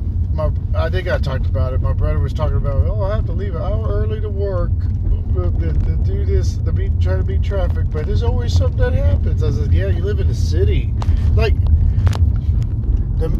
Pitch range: 85-95 Hz